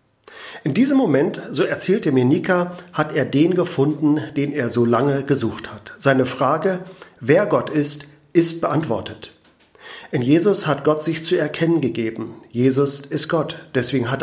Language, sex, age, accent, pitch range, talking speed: German, male, 40-59, German, 130-160 Hz, 155 wpm